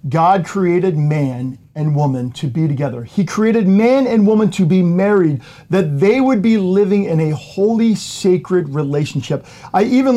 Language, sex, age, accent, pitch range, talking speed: English, male, 40-59, American, 140-195 Hz, 165 wpm